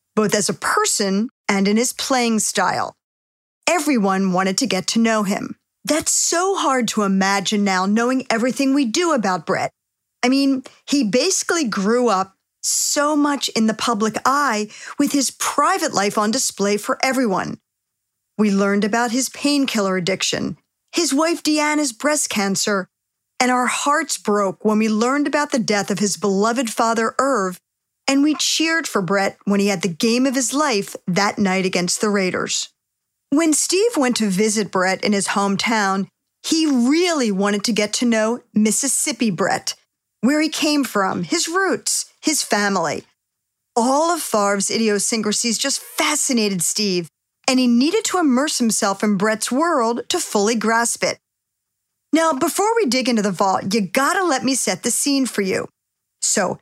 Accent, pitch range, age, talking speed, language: American, 205-280 Hz, 40-59, 165 wpm, English